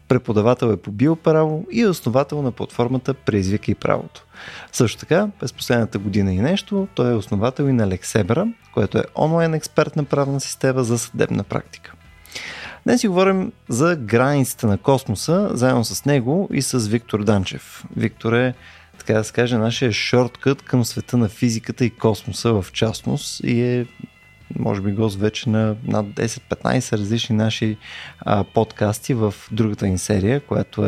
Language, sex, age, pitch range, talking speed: Bulgarian, male, 20-39, 110-145 Hz, 160 wpm